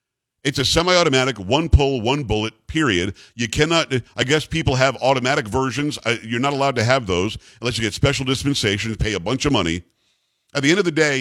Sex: male